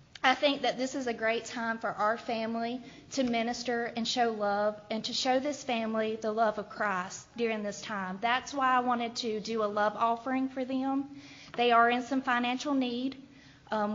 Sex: female